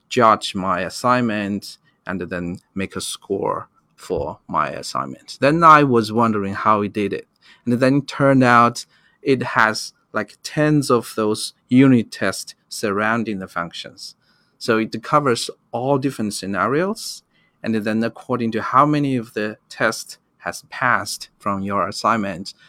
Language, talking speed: English, 145 wpm